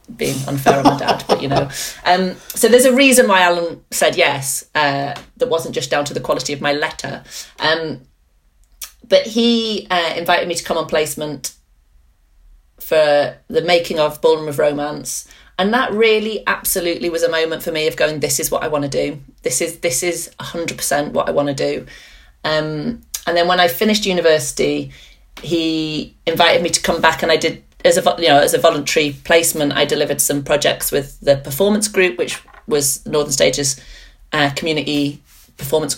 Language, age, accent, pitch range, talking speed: English, 30-49, British, 145-180 Hz, 185 wpm